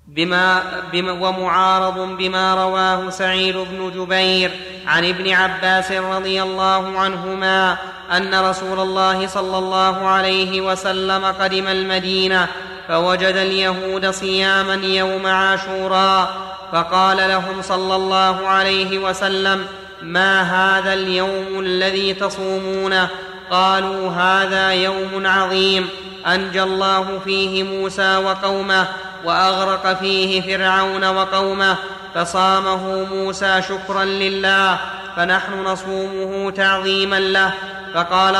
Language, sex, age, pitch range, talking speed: Arabic, male, 20-39, 190-195 Hz, 95 wpm